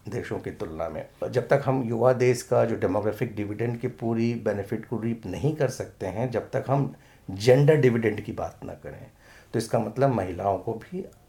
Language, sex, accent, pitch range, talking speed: Hindi, male, native, 105-130 Hz, 195 wpm